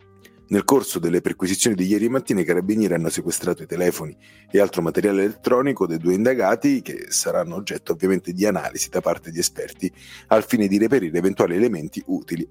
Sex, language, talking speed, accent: male, Italian, 175 wpm, native